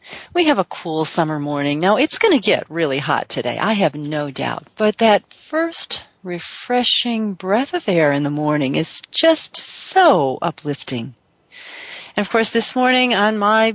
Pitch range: 160-225 Hz